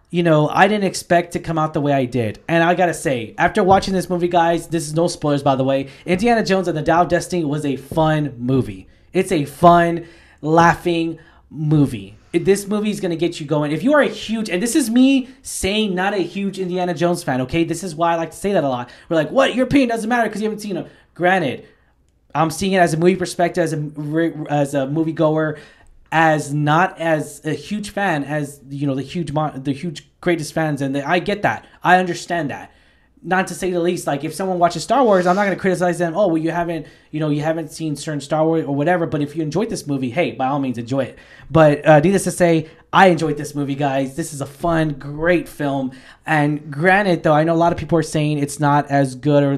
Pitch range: 150-180 Hz